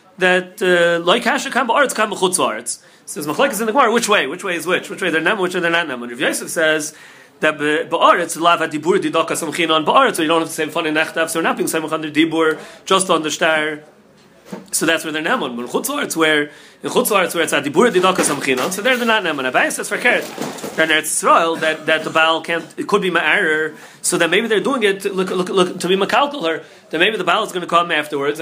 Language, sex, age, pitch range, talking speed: English, male, 30-49, 160-195 Hz, 235 wpm